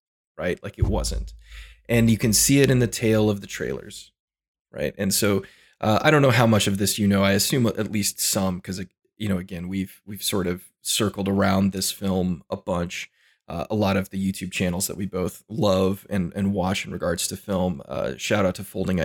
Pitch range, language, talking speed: 95-115 Hz, English, 220 wpm